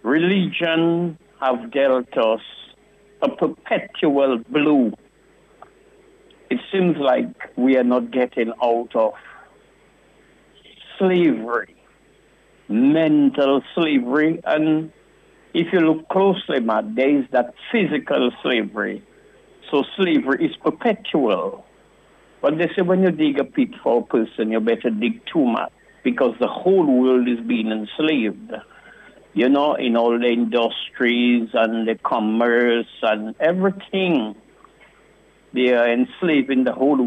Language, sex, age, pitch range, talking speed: English, male, 60-79, 120-185 Hz, 120 wpm